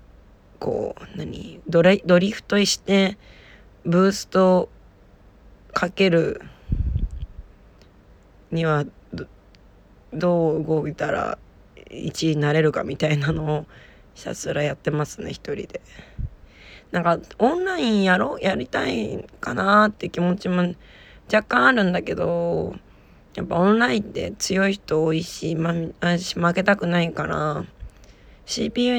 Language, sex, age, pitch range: Japanese, female, 20-39, 150-190 Hz